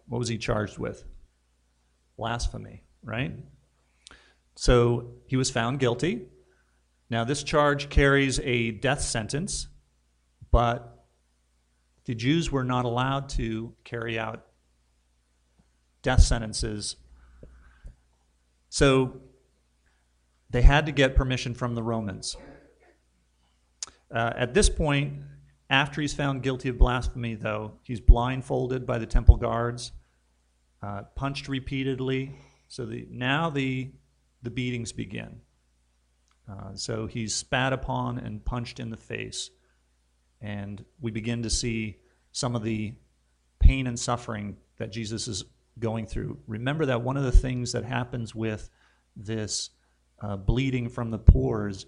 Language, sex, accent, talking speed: English, male, American, 125 wpm